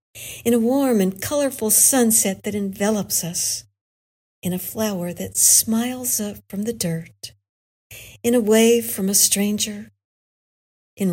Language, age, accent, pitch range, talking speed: English, 60-79, American, 180-235 Hz, 135 wpm